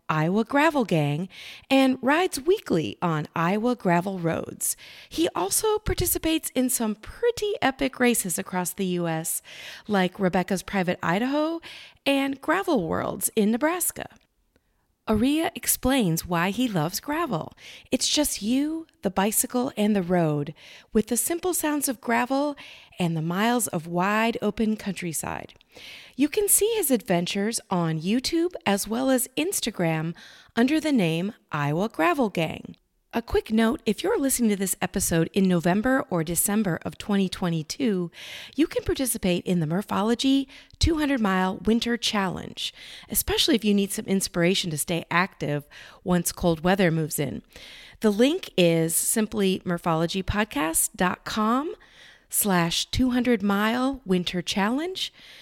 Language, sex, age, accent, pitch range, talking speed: English, female, 40-59, American, 180-270 Hz, 130 wpm